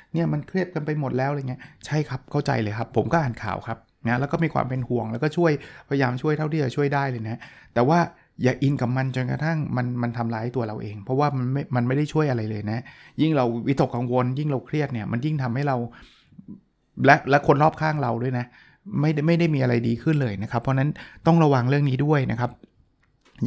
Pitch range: 120-145 Hz